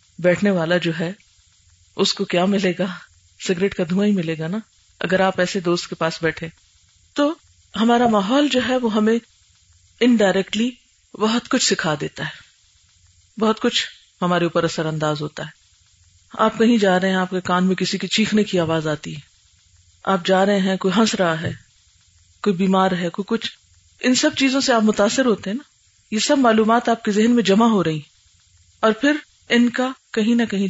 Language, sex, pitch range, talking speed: Urdu, female, 165-225 Hz, 180 wpm